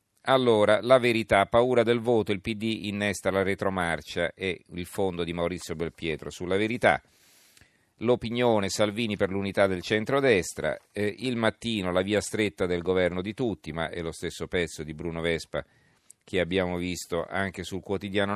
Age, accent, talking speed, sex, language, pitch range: 40-59, native, 165 wpm, male, Italian, 90-110 Hz